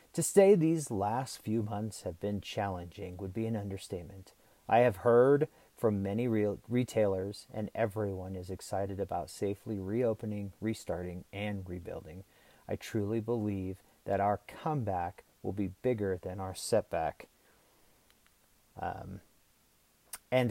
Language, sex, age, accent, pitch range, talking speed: English, male, 40-59, American, 95-120 Hz, 130 wpm